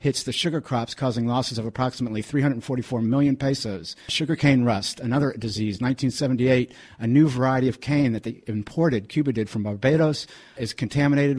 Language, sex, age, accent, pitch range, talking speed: English, male, 50-69, American, 110-135 Hz, 160 wpm